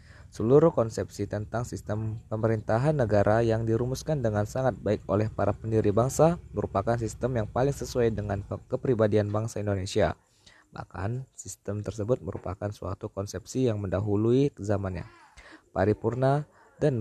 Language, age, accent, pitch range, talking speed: Indonesian, 20-39, native, 100-120 Hz, 125 wpm